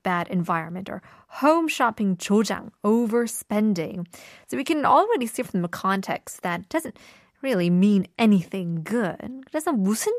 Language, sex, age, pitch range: Korean, female, 20-39, 190-290 Hz